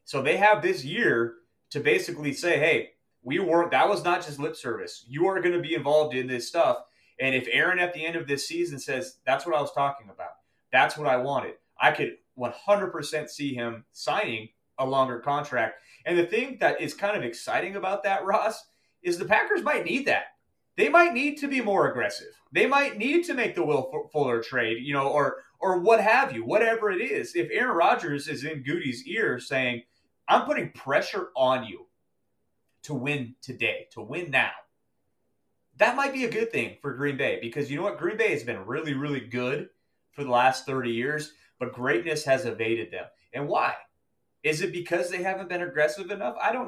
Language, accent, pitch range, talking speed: English, American, 130-205 Hz, 205 wpm